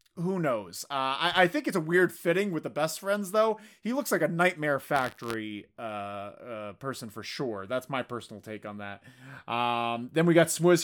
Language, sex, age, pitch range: English, male, 30-49, 130-175 Hz